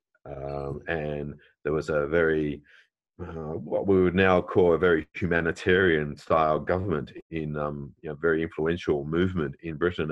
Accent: Australian